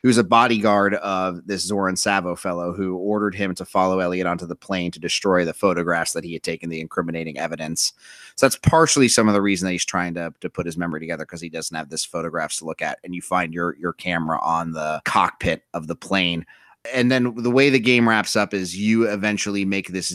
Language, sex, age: English, male, 30-49